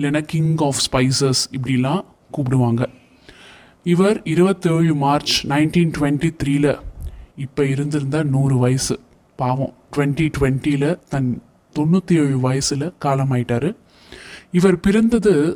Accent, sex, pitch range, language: native, male, 135-175 Hz, Tamil